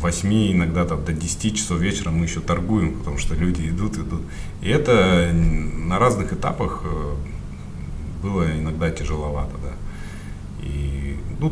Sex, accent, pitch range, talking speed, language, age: male, native, 75-90 Hz, 135 wpm, Russian, 30-49